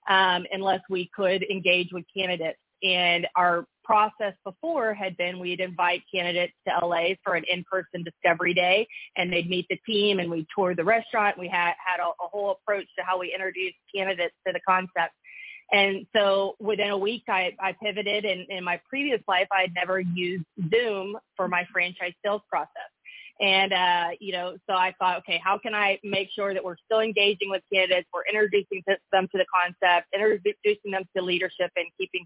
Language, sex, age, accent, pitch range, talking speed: English, female, 30-49, American, 180-210 Hz, 190 wpm